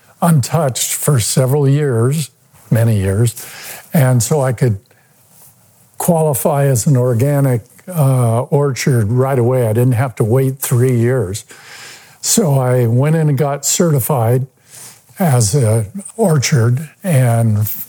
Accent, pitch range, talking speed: American, 120-155 Hz, 120 wpm